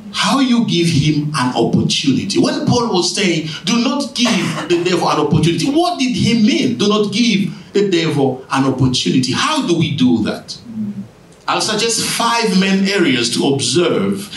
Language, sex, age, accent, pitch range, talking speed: English, male, 50-69, Nigerian, 150-200 Hz, 165 wpm